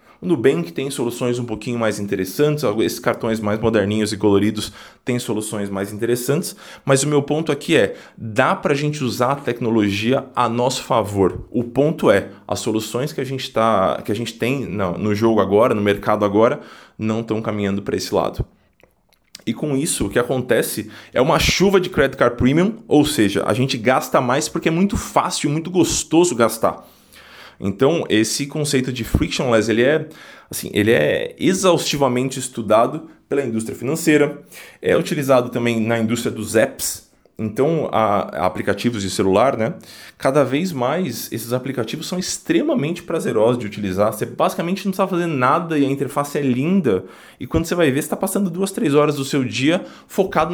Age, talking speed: 20-39, 180 wpm